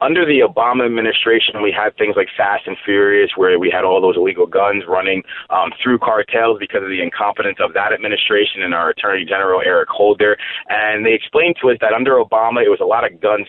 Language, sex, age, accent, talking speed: English, male, 30-49, American, 220 wpm